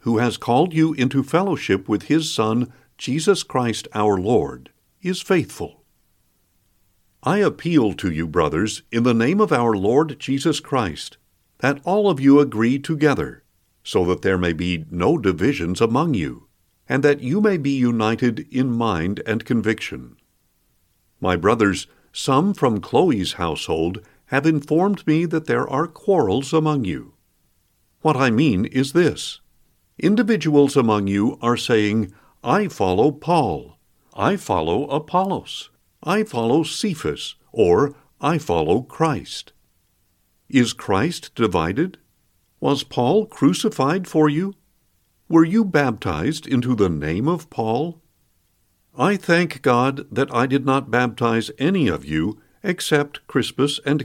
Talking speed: 135 wpm